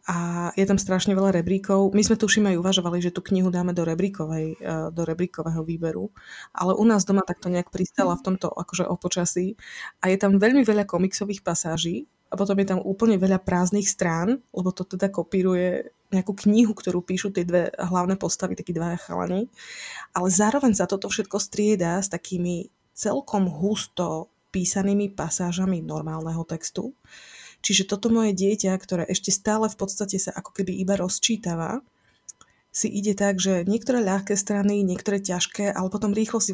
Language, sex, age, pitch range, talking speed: Slovak, female, 20-39, 175-205 Hz, 165 wpm